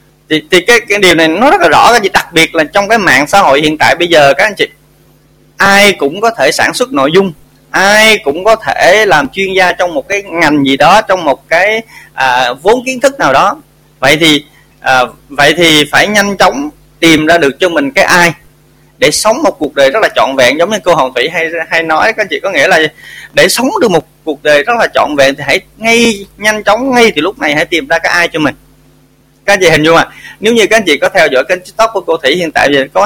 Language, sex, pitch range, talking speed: Vietnamese, male, 145-200 Hz, 260 wpm